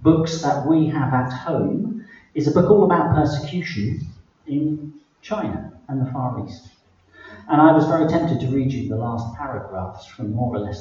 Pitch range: 105-145 Hz